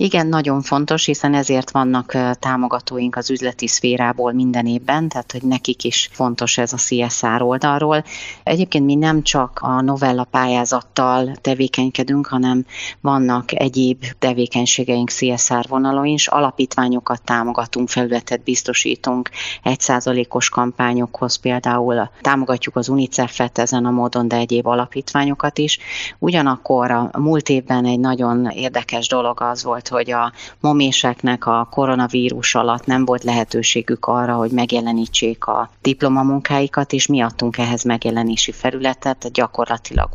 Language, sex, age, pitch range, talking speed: Hungarian, female, 30-49, 120-130 Hz, 125 wpm